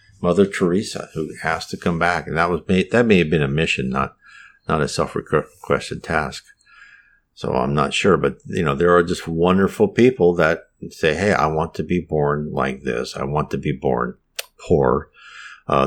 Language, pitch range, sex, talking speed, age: English, 80-115 Hz, male, 190 wpm, 50-69